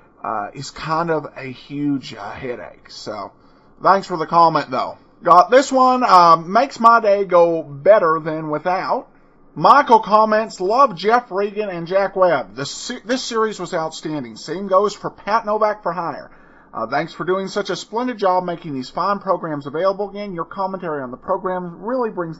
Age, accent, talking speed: 40-59, American, 180 wpm